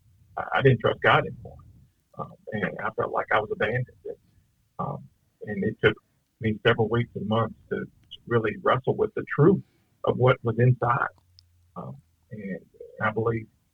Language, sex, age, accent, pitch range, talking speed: English, male, 50-69, American, 110-135 Hz, 160 wpm